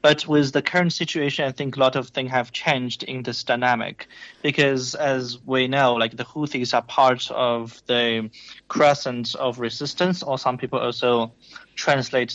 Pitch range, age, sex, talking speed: 115-130 Hz, 20-39, male, 170 wpm